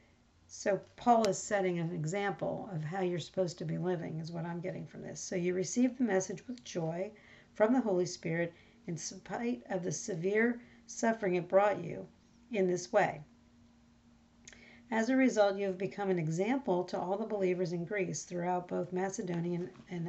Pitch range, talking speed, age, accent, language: 175-205 Hz, 180 wpm, 50-69, American, English